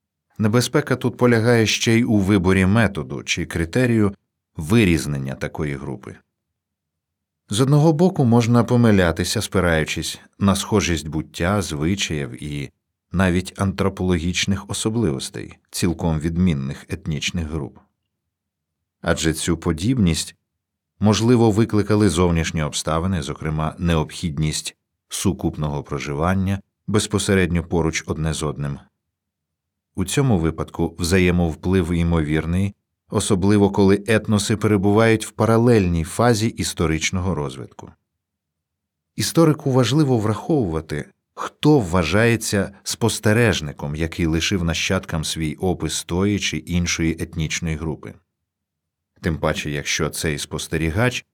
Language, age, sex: Ukrainian, 40-59, male